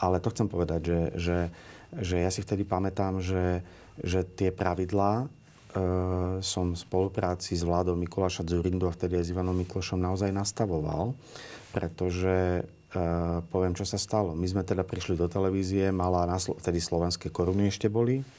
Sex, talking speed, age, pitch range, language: male, 160 wpm, 40-59, 85-100 Hz, Slovak